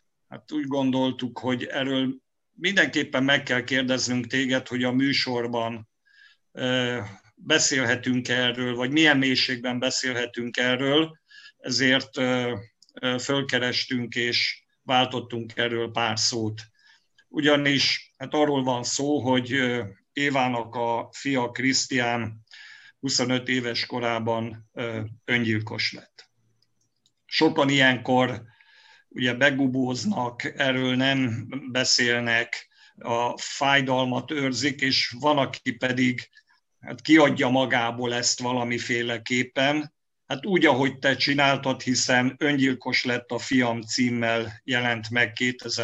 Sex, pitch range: male, 120-135 Hz